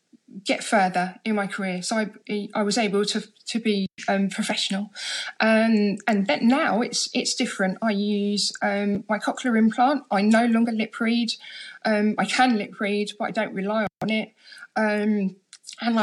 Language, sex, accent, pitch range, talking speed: English, female, British, 195-230 Hz, 170 wpm